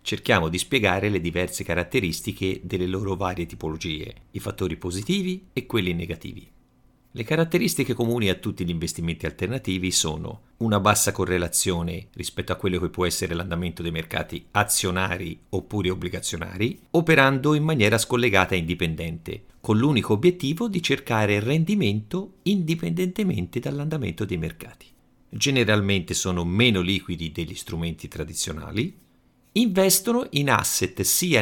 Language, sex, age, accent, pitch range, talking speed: Italian, male, 50-69, native, 90-135 Hz, 130 wpm